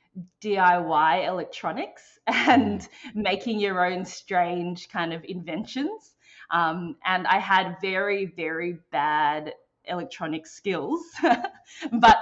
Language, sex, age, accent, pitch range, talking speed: English, female, 20-39, Australian, 170-215 Hz, 100 wpm